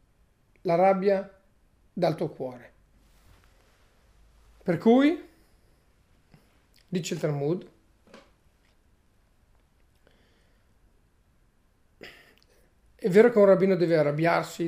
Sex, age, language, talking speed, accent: male, 40-59, Italian, 70 wpm, native